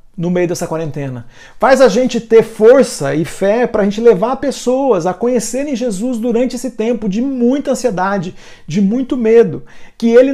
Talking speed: 175 wpm